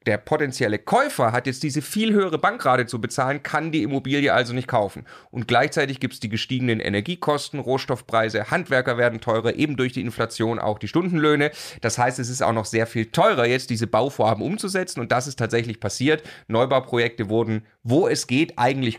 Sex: male